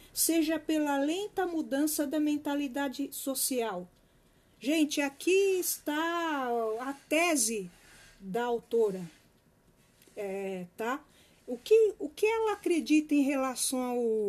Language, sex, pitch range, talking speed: Portuguese, female, 225-315 Hz, 90 wpm